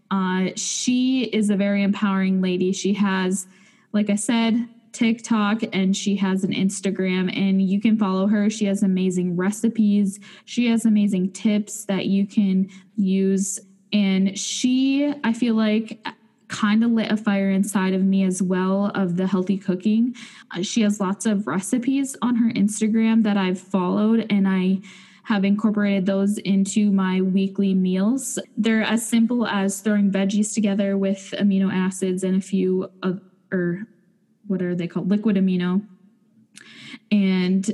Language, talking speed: English, 155 wpm